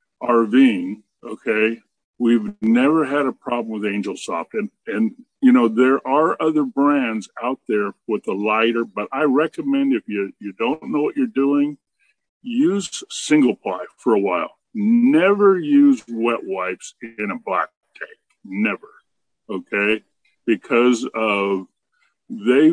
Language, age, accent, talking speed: English, 50-69, American, 140 wpm